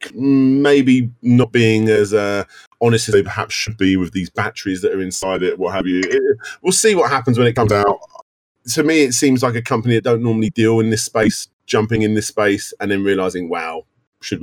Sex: male